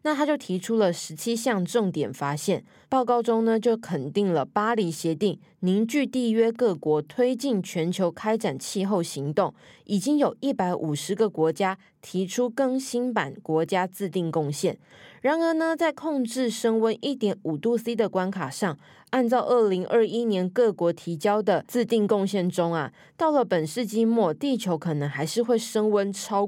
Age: 20-39